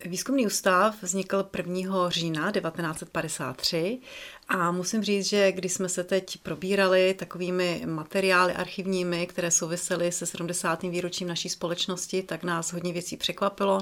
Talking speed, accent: 130 wpm, native